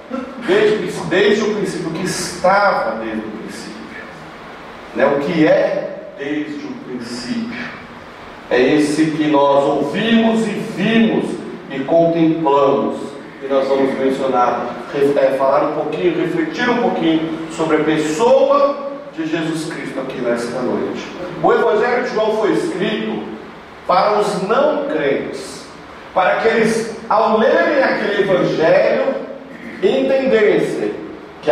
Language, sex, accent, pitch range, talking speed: Portuguese, male, Brazilian, 150-245 Hz, 120 wpm